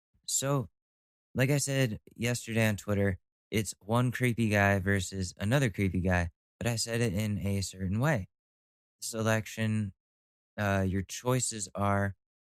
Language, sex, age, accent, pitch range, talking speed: English, male, 20-39, American, 95-115 Hz, 135 wpm